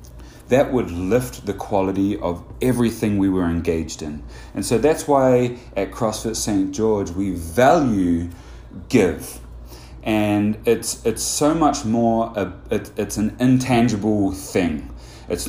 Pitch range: 85-110 Hz